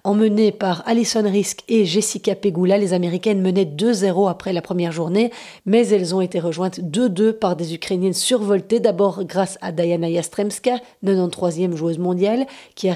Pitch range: 180-220 Hz